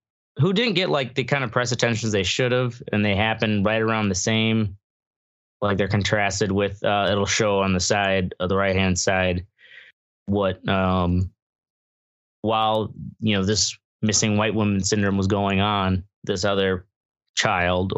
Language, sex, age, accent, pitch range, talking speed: English, male, 20-39, American, 100-125 Hz, 165 wpm